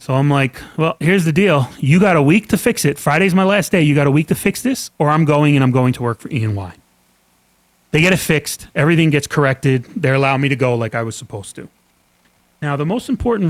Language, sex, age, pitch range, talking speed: English, male, 30-49, 130-170 Hz, 255 wpm